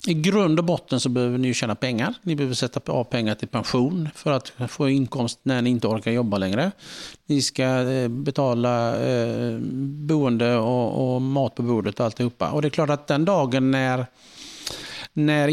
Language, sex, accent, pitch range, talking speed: Swedish, male, Norwegian, 125-155 Hz, 180 wpm